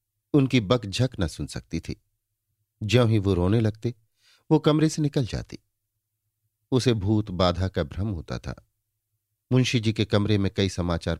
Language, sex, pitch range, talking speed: Hindi, male, 100-115 Hz, 160 wpm